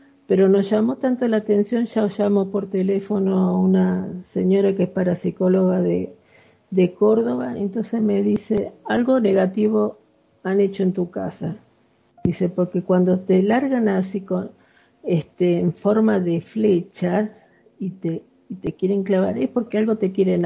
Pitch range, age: 175-210 Hz, 50-69